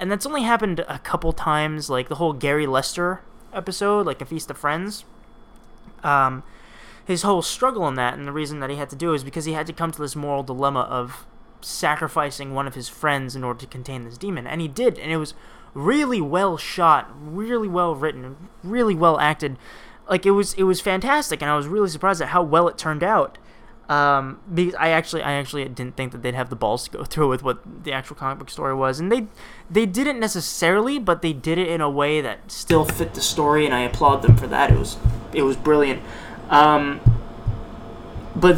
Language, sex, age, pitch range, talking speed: English, male, 20-39, 135-175 Hz, 220 wpm